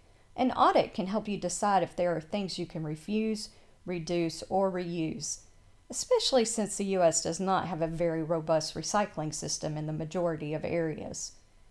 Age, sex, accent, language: 40-59, female, American, English